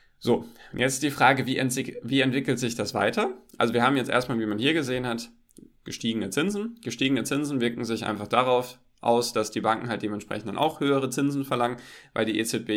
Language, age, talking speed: German, 10-29, 200 wpm